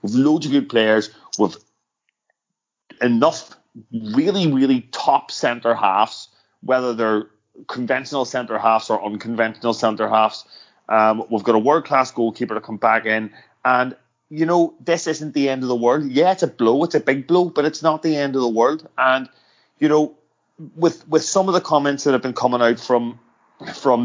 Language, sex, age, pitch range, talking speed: English, male, 30-49, 115-140 Hz, 175 wpm